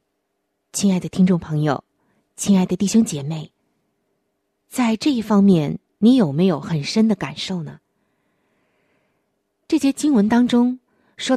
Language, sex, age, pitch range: Chinese, female, 20-39, 170-240 Hz